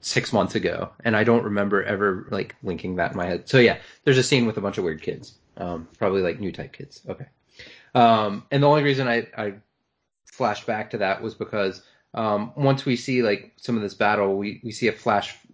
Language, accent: English, American